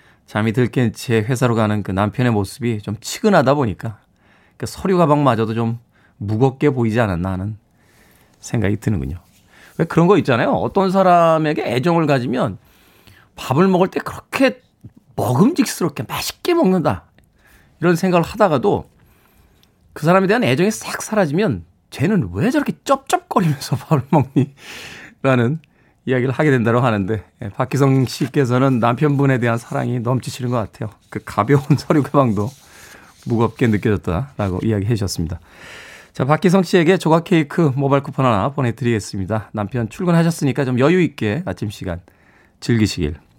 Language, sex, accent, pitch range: Korean, male, native, 105-165 Hz